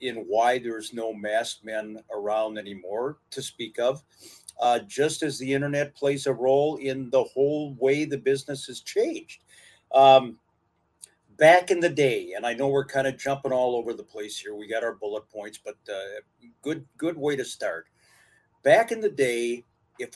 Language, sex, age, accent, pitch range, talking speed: English, male, 50-69, American, 120-160 Hz, 180 wpm